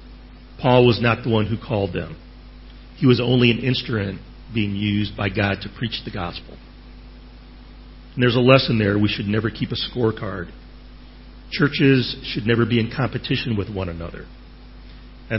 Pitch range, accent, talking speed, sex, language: 105-125 Hz, American, 165 wpm, male, English